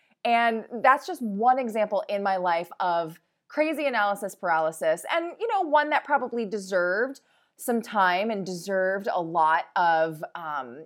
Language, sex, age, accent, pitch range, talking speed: English, female, 20-39, American, 185-250 Hz, 150 wpm